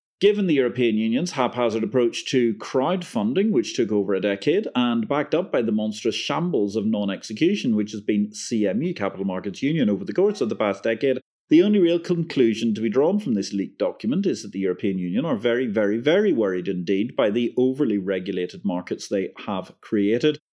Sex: male